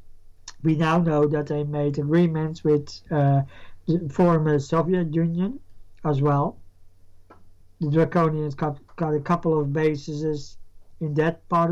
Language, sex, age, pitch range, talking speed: English, male, 50-69, 140-165 Hz, 135 wpm